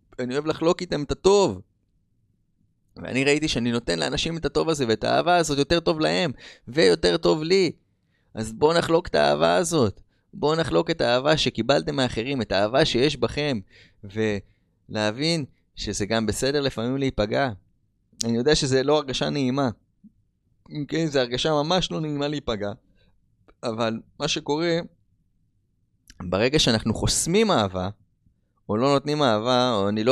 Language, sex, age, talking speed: Hebrew, male, 20-39, 145 wpm